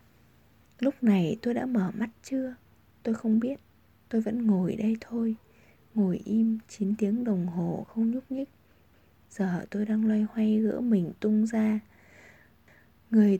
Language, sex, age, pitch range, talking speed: Vietnamese, female, 20-39, 195-235 Hz, 150 wpm